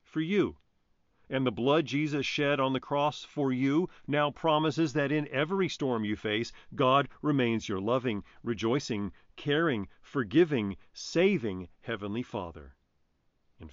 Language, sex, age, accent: English, male, 40-59, American